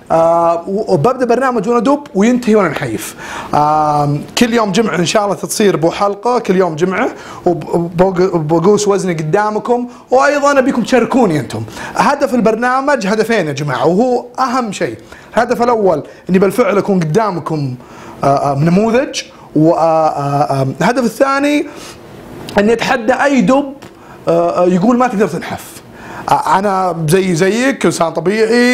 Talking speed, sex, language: 115 wpm, male, English